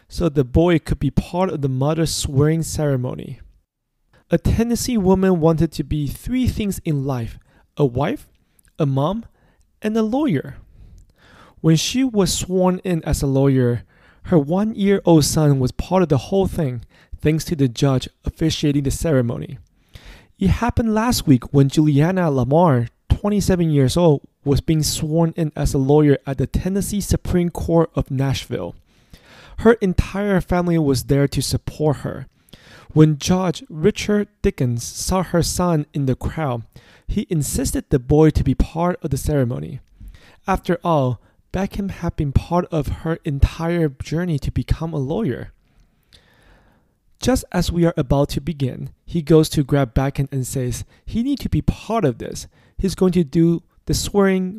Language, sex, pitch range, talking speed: English, male, 135-175 Hz, 160 wpm